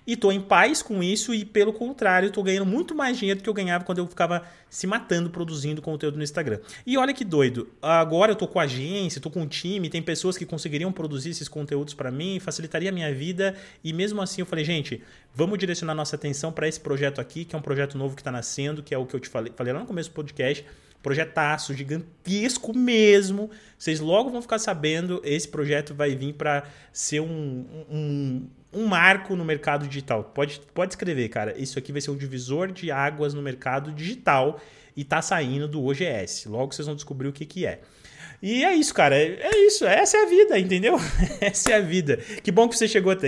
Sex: male